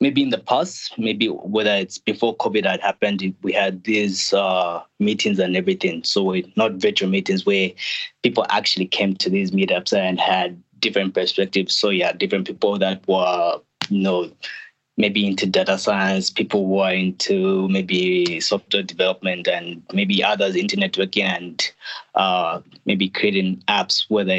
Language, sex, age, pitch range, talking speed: English, male, 20-39, 95-115 Hz, 155 wpm